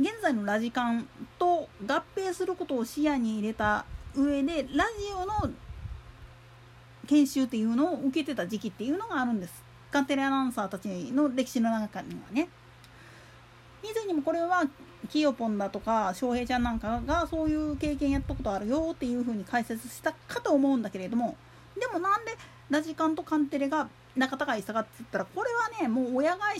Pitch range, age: 225-325 Hz, 40-59